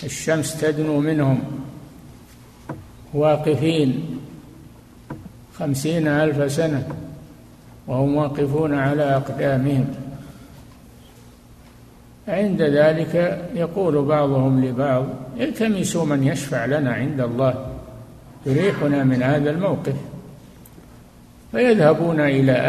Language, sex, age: Arabic, male, 60-79